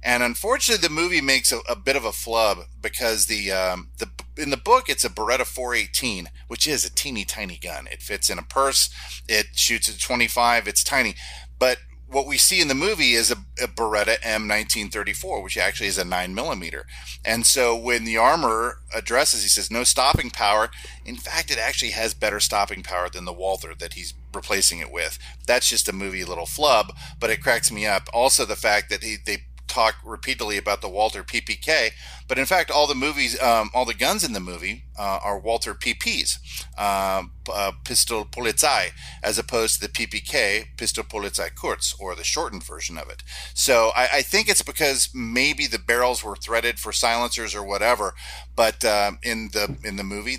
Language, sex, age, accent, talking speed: English, male, 40-59, American, 195 wpm